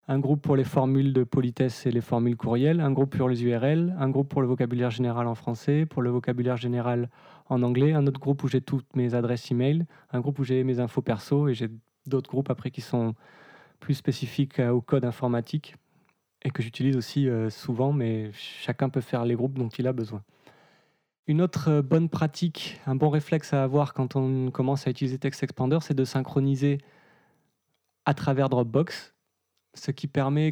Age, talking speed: 20-39, 190 wpm